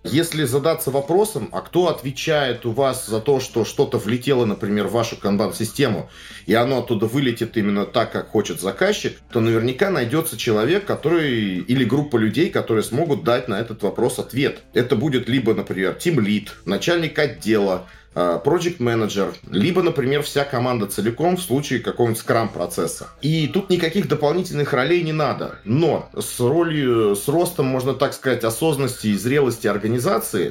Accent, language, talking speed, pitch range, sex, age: native, Russian, 155 wpm, 115-150 Hz, male, 30-49